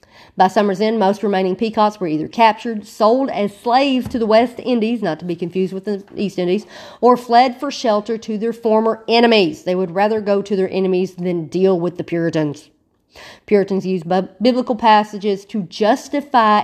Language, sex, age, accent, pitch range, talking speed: English, female, 40-59, American, 185-225 Hz, 180 wpm